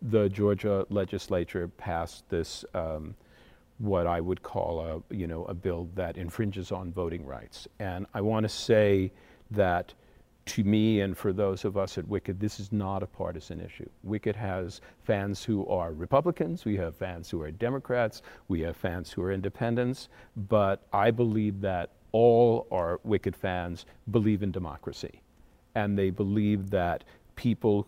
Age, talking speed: 50-69, 155 wpm